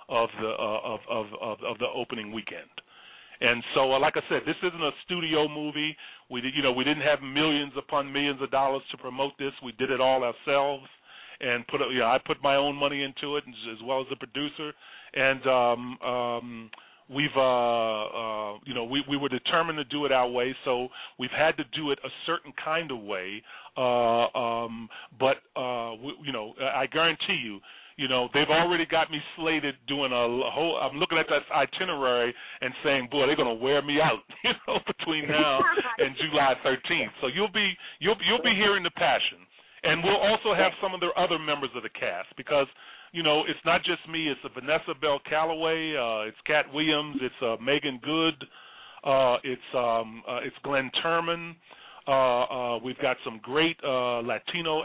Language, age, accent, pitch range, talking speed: English, 40-59, American, 125-155 Hz, 195 wpm